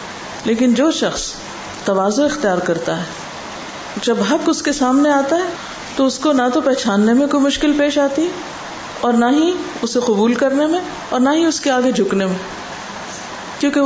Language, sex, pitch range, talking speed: Urdu, female, 190-255 Hz, 180 wpm